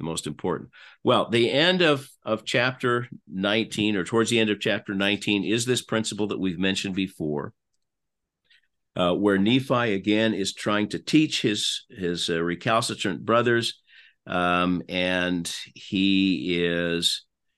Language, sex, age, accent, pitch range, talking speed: English, male, 50-69, American, 90-110 Hz, 140 wpm